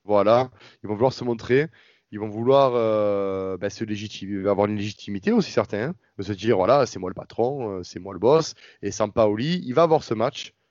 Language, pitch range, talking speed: French, 105-140 Hz, 215 wpm